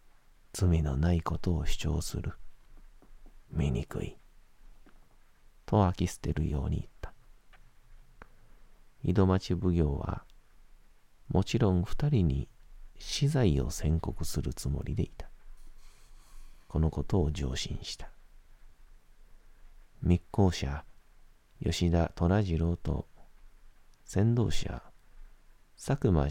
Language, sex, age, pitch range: Japanese, male, 40-59, 80-105 Hz